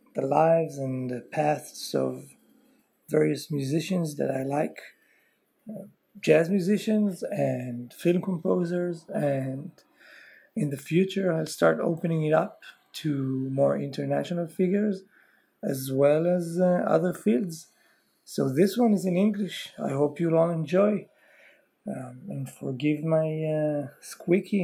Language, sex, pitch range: Hebrew, male, 140-175 Hz